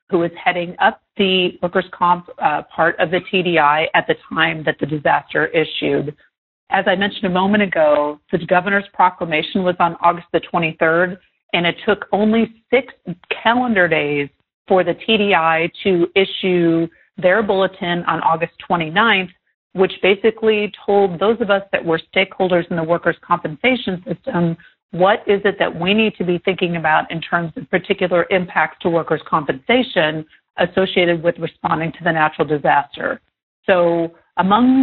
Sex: female